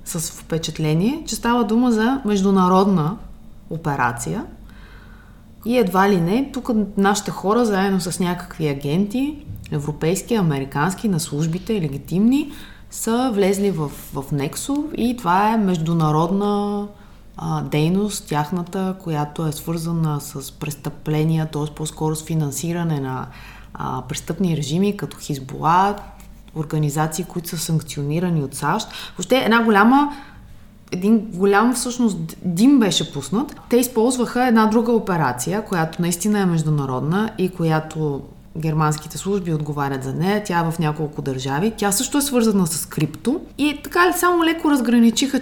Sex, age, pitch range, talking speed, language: female, 20-39, 155-215 Hz, 130 wpm, Bulgarian